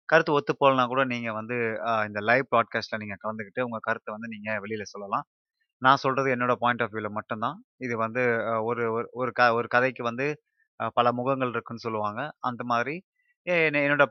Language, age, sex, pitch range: Tamil, 20-39, male, 110-135 Hz